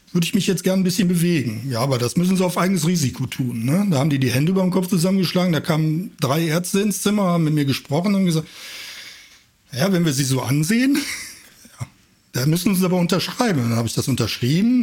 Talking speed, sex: 235 wpm, male